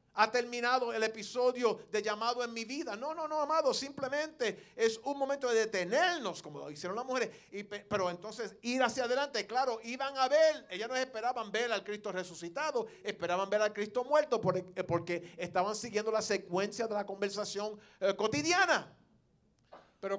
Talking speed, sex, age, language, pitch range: 170 wpm, male, 40-59, English, 205-260 Hz